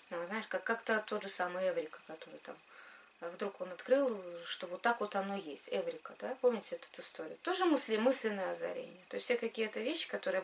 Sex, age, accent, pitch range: female, 20-39, native, 195-270 Hz